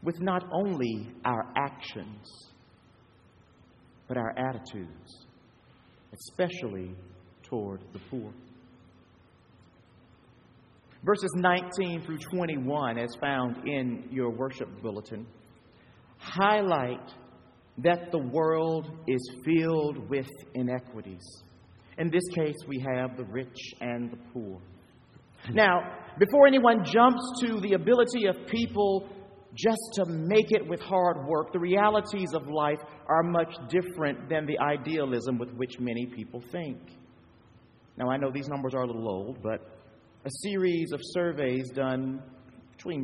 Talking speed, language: 120 wpm, English